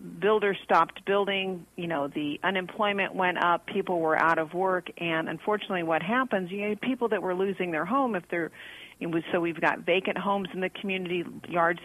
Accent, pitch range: American, 165-190 Hz